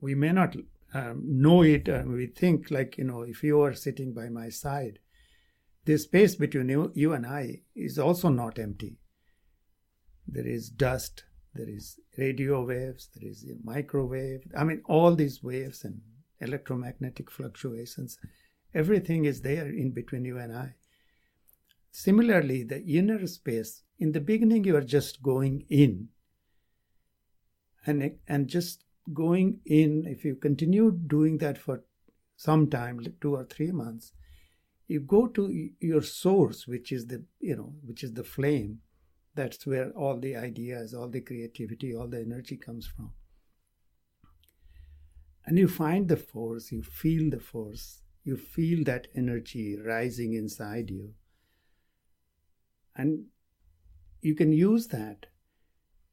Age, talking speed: 60-79, 145 wpm